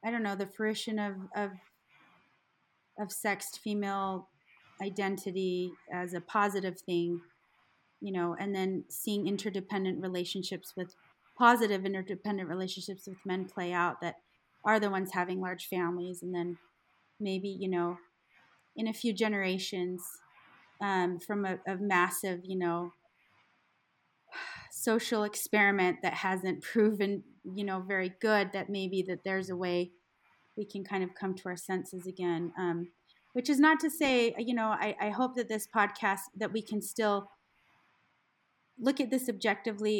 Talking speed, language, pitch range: 150 wpm, English, 180-210 Hz